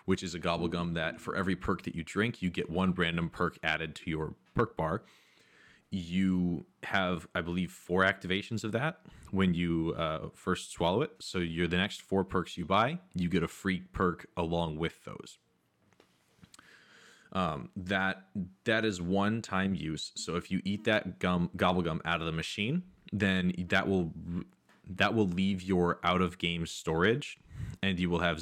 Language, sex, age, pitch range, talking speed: English, male, 20-39, 85-95 Hz, 170 wpm